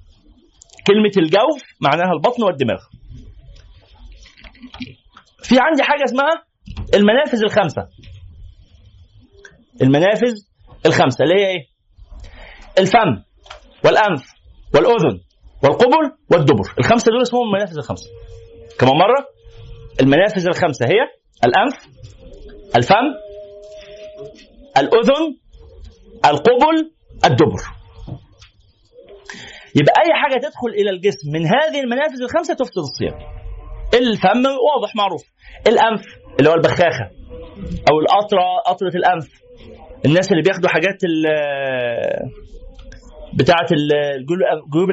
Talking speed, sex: 85 wpm, male